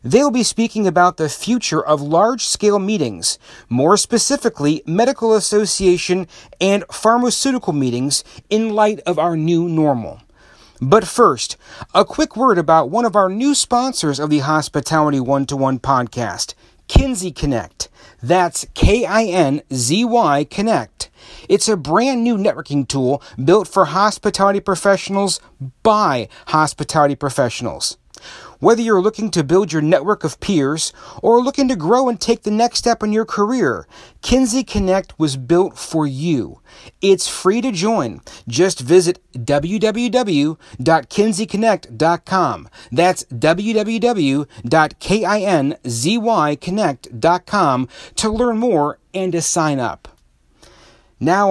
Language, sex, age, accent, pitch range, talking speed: English, male, 40-59, American, 150-220 Hz, 115 wpm